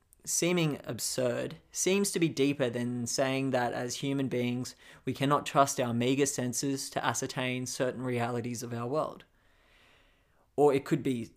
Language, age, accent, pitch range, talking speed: English, 20-39, Australian, 115-135 Hz, 155 wpm